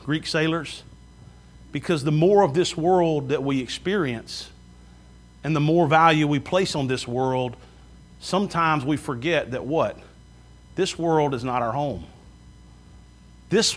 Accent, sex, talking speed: American, male, 140 wpm